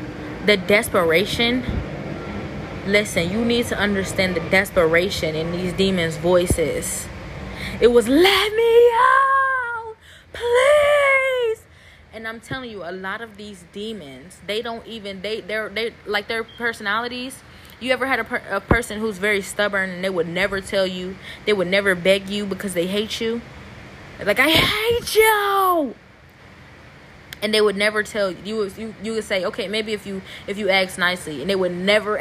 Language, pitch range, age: English, 180-225 Hz, 20-39